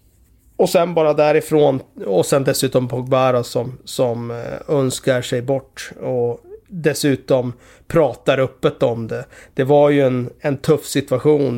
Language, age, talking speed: Swedish, 30-49, 135 wpm